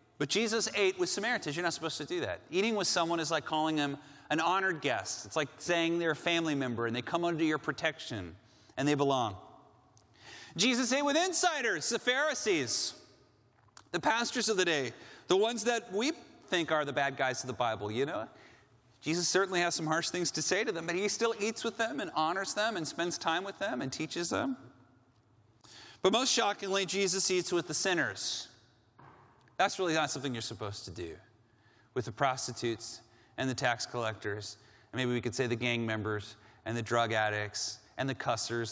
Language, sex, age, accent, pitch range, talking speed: Dutch, male, 30-49, American, 115-175 Hz, 195 wpm